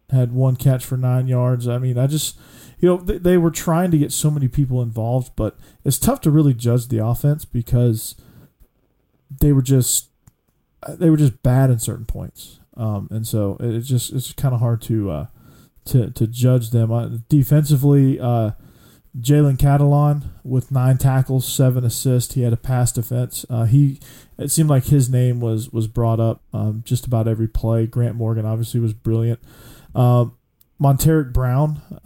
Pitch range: 115-140 Hz